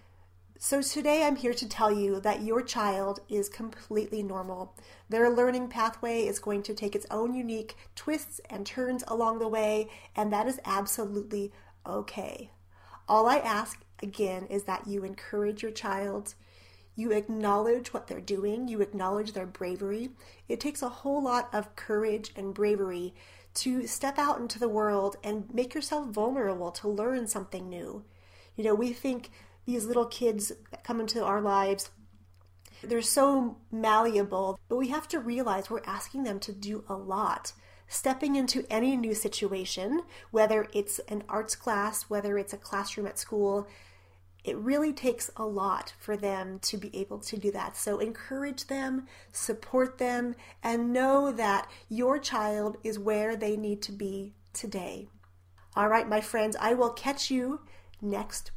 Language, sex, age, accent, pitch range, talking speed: English, female, 30-49, American, 195-240 Hz, 160 wpm